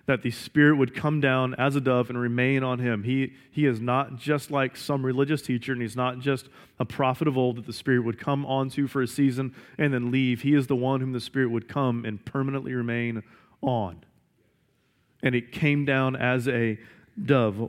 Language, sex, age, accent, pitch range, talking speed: English, male, 30-49, American, 120-135 Hz, 210 wpm